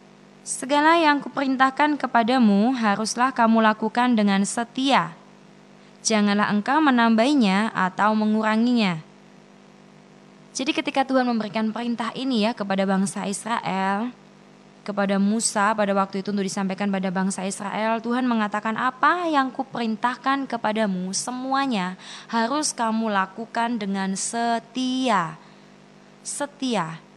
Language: Indonesian